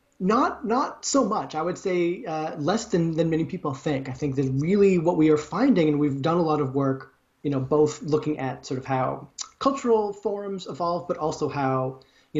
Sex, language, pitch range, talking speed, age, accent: male, English, 135-165 Hz, 215 wpm, 20-39, American